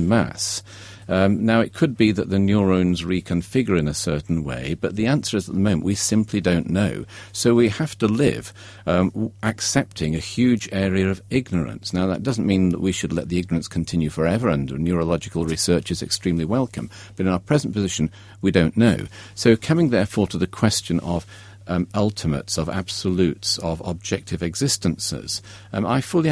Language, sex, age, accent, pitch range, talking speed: English, male, 50-69, British, 90-110 Hz, 180 wpm